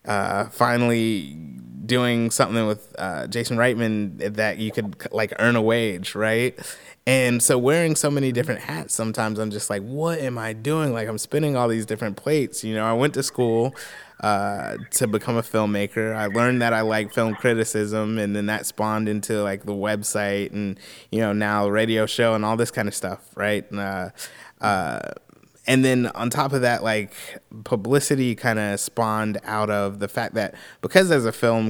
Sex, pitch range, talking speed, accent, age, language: male, 105-125 Hz, 190 wpm, American, 20-39, English